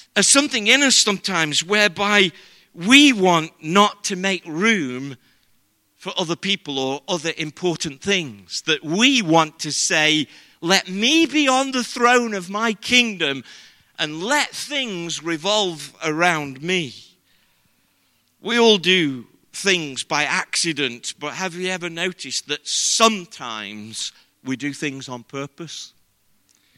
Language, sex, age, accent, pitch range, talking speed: English, male, 50-69, British, 125-190 Hz, 130 wpm